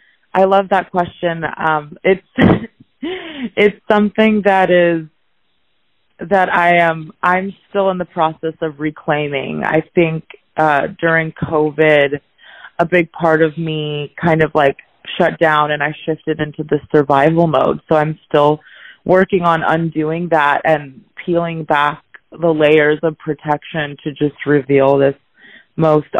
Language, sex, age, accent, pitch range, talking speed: English, female, 20-39, American, 155-185 Hz, 140 wpm